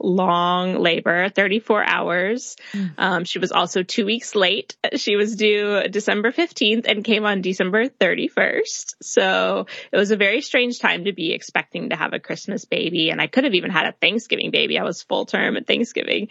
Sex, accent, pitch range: female, American, 175-225 Hz